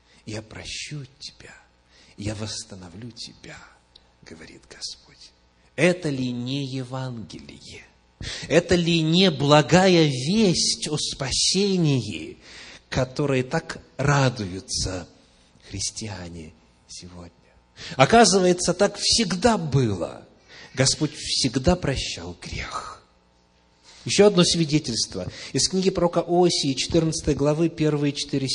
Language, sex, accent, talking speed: Russian, male, native, 90 wpm